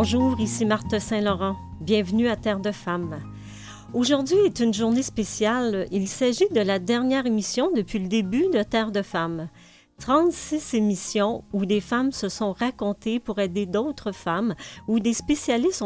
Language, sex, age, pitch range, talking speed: French, female, 40-59, 190-235 Hz, 160 wpm